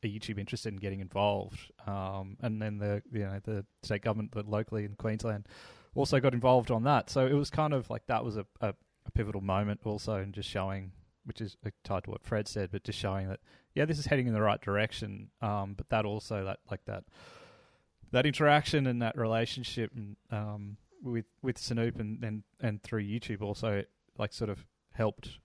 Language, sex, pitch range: English, male, 100-115 Hz